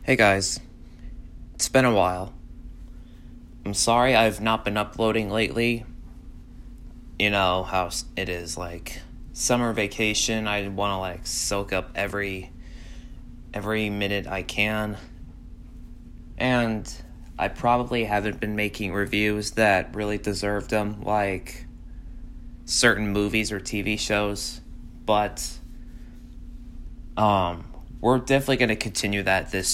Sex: male